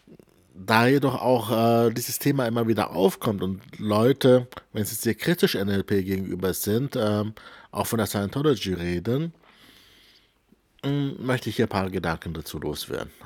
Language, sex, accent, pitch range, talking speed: German, male, German, 100-130 Hz, 150 wpm